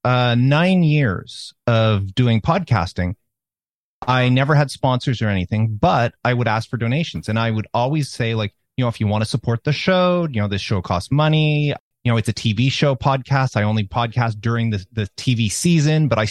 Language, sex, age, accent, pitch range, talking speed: English, male, 30-49, American, 115-145 Hz, 205 wpm